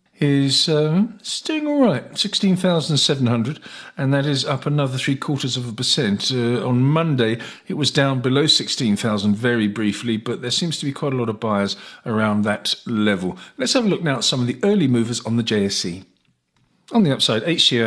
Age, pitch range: 50-69, 115-150 Hz